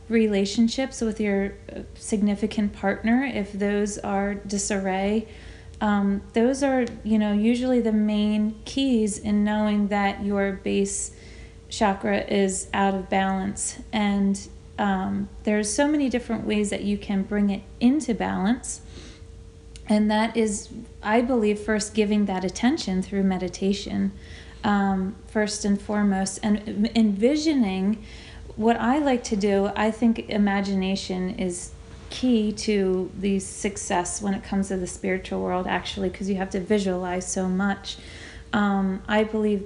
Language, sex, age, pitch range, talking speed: English, female, 30-49, 195-220 Hz, 135 wpm